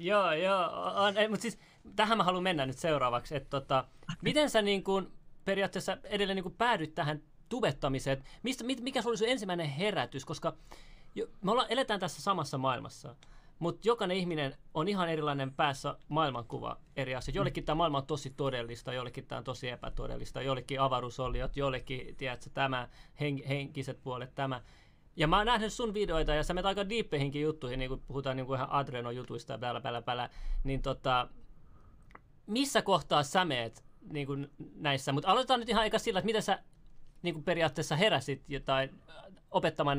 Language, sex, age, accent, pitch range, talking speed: Finnish, male, 30-49, native, 135-190 Hz, 160 wpm